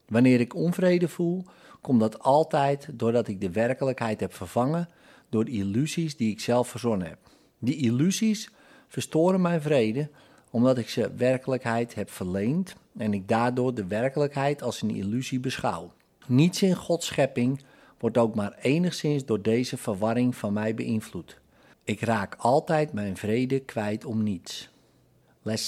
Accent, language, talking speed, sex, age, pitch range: Dutch, Dutch, 145 wpm, male, 50-69, 110-150 Hz